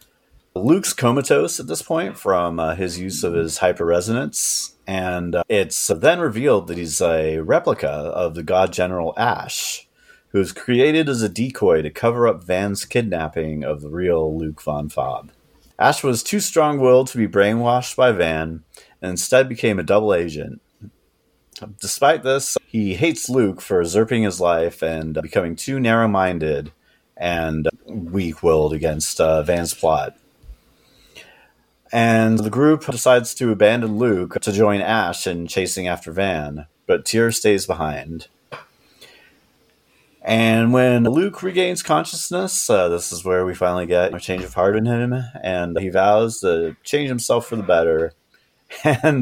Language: English